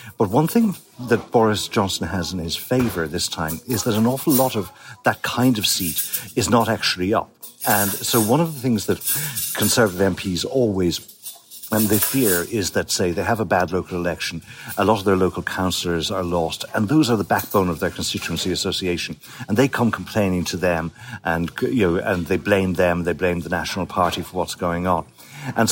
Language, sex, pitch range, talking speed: English, male, 90-115 Hz, 205 wpm